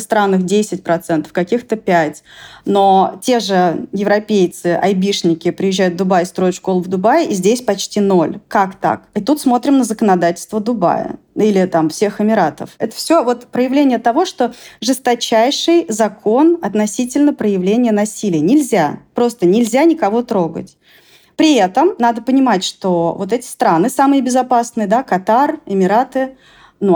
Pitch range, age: 190-245 Hz, 30-49